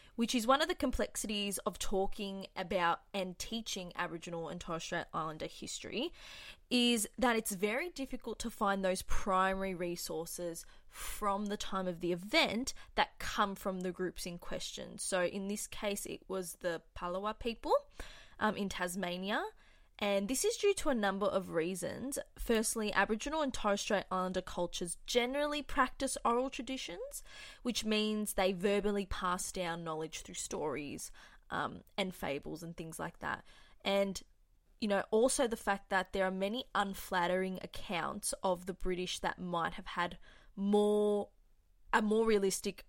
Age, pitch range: 20-39, 185-225 Hz